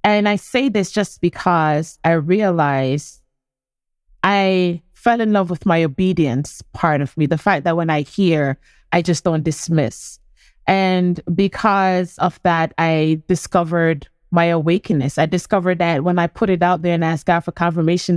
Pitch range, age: 160-185 Hz, 30-49